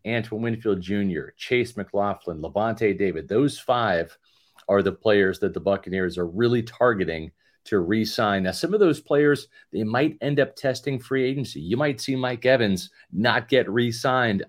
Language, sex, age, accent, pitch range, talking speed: English, male, 40-59, American, 105-130 Hz, 165 wpm